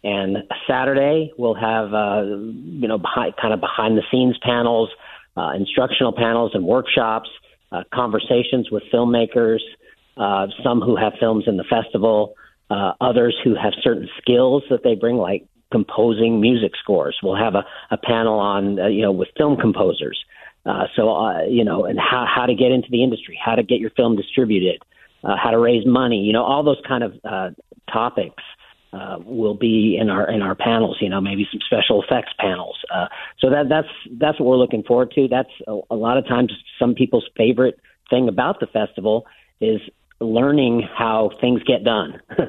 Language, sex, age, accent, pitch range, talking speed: English, male, 50-69, American, 110-125 Hz, 190 wpm